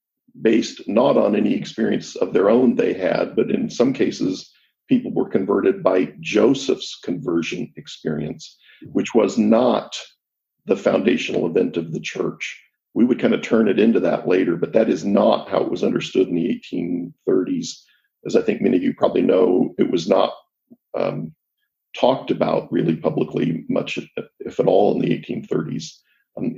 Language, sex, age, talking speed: English, male, 50-69, 165 wpm